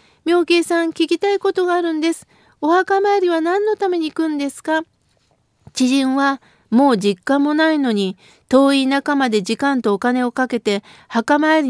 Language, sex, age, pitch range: Japanese, female, 40-59, 240-315 Hz